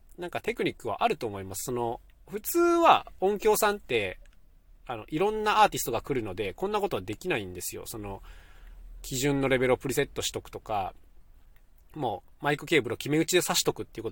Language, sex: Japanese, male